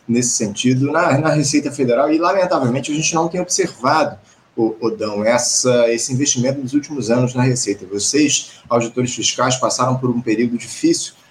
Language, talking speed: Portuguese, 155 wpm